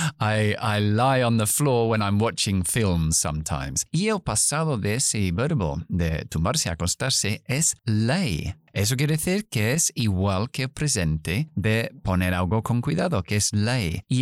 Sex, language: male, Spanish